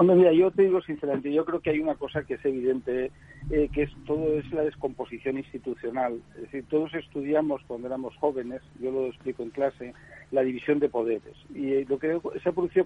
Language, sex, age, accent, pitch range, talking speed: Spanish, male, 60-79, Spanish, 130-155 Hz, 215 wpm